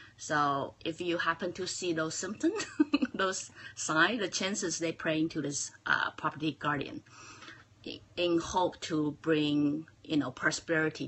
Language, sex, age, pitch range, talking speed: English, female, 30-49, 140-170 Hz, 140 wpm